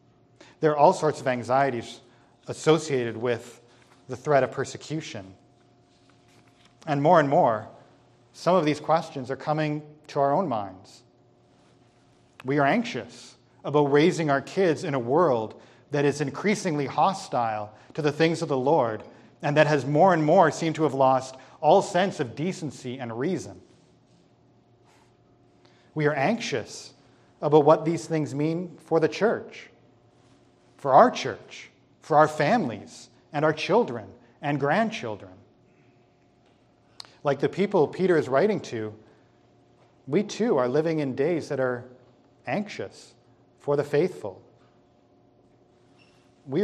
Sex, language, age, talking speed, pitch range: male, English, 40-59, 135 wpm, 120-155 Hz